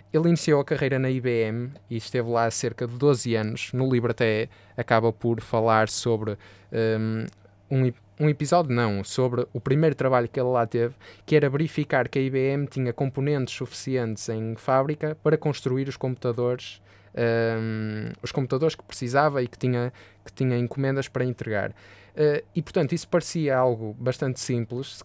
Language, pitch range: Portuguese, 115-140 Hz